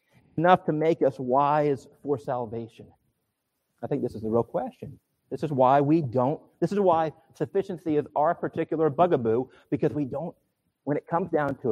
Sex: male